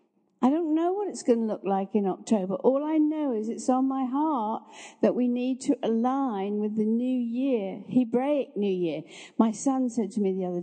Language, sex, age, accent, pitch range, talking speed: English, female, 60-79, British, 195-260 Hz, 215 wpm